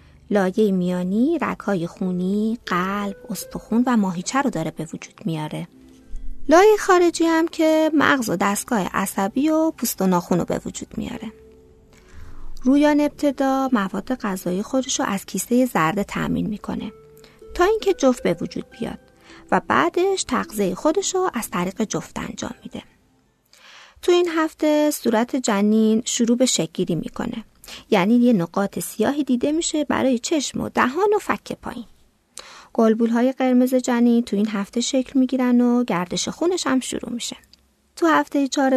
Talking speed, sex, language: 140 wpm, female, Persian